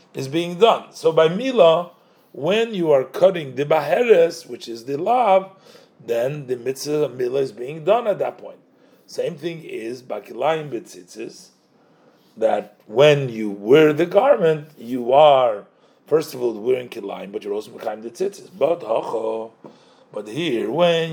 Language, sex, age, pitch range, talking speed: English, male, 40-59, 130-200 Hz, 160 wpm